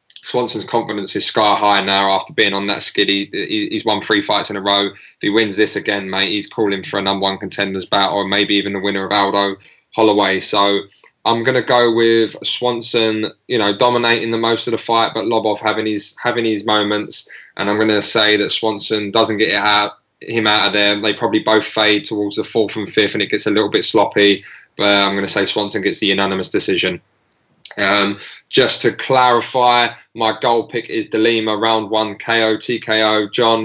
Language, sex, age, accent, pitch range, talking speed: English, male, 10-29, British, 100-115 Hz, 210 wpm